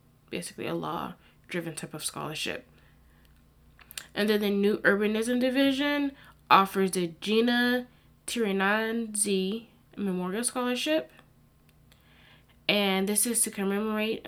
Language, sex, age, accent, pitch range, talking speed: English, female, 10-29, American, 175-215 Hz, 95 wpm